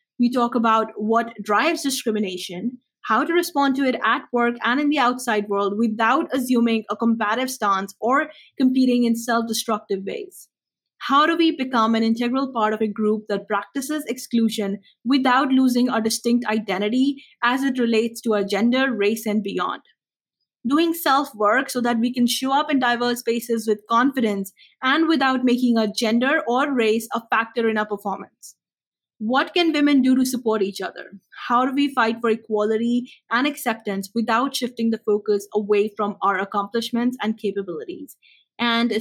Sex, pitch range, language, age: female, 210-255 Hz, English, 20-39